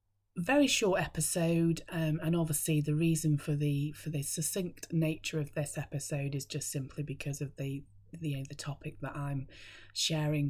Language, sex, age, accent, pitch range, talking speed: English, female, 30-49, British, 140-165 Hz, 165 wpm